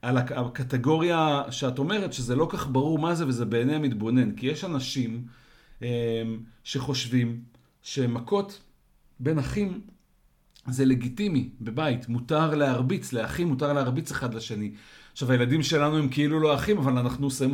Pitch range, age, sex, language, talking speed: 125-155 Hz, 50-69, male, Hebrew, 135 wpm